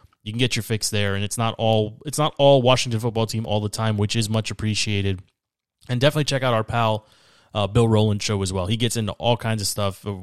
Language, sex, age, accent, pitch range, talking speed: English, male, 20-39, American, 105-130 Hz, 250 wpm